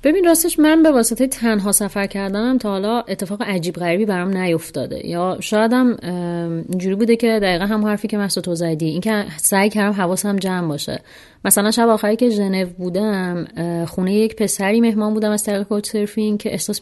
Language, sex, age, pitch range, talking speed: Persian, female, 30-49, 165-205 Hz, 185 wpm